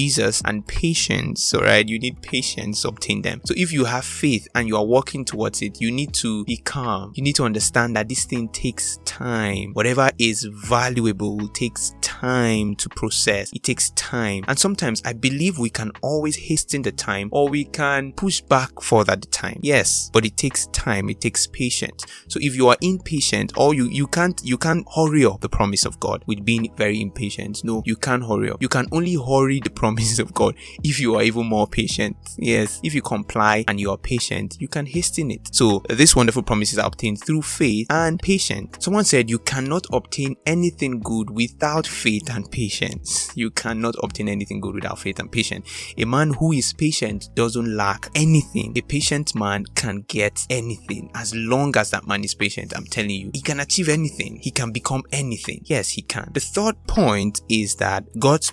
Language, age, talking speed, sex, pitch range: English, 20-39, 200 wpm, male, 105-140 Hz